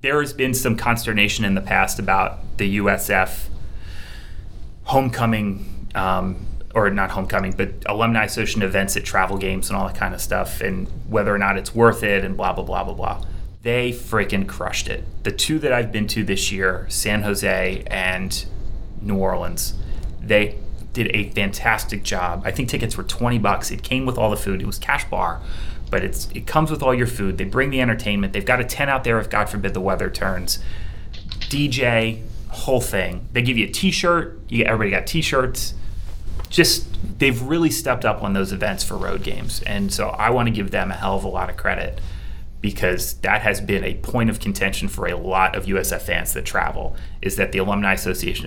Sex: male